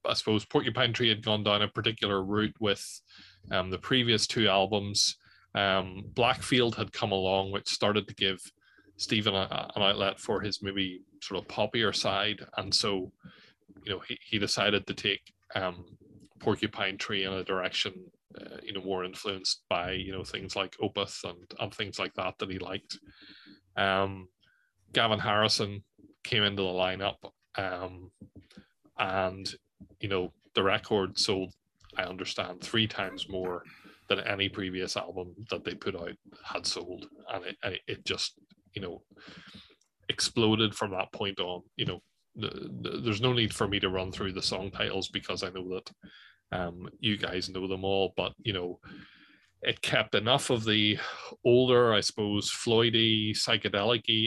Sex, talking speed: male, 165 wpm